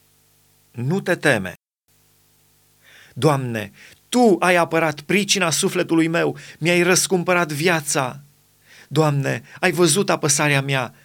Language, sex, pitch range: Romanian, male, 145-180 Hz